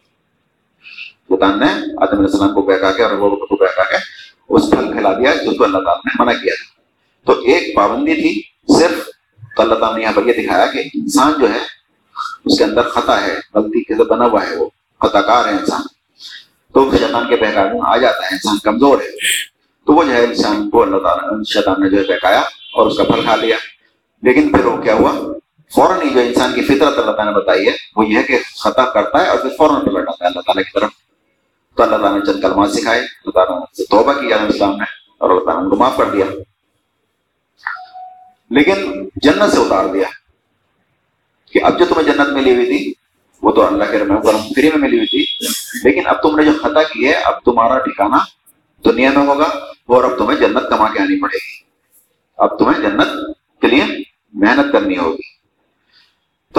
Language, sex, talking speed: Urdu, male, 180 wpm